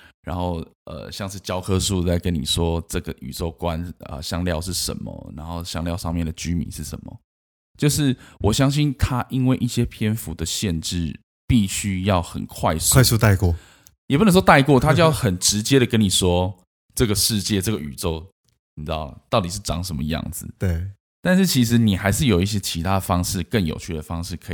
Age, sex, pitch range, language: 20-39, male, 85-115 Hz, Chinese